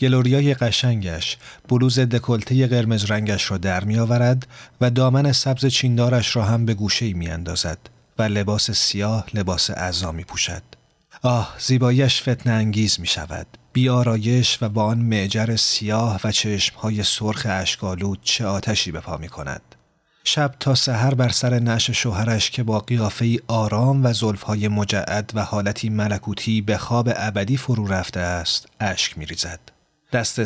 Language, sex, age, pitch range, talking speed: Persian, male, 40-59, 100-125 Hz, 140 wpm